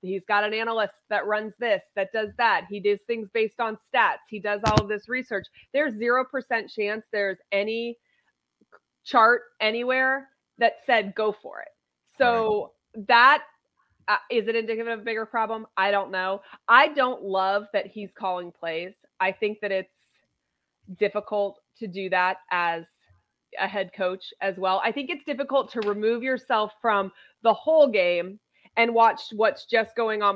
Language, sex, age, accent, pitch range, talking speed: English, female, 20-39, American, 195-235 Hz, 165 wpm